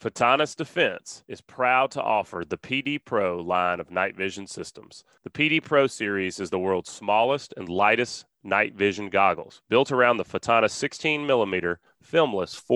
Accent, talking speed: American, 155 wpm